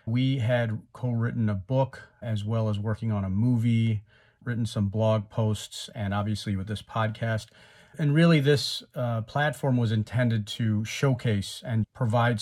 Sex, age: male, 40-59